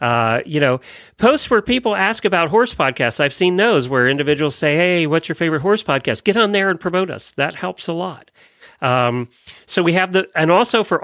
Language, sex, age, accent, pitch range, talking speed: English, male, 40-59, American, 120-165 Hz, 225 wpm